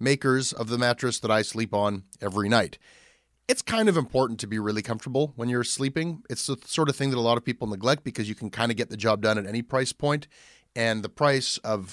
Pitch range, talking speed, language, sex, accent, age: 110-140 Hz, 245 wpm, English, male, American, 30-49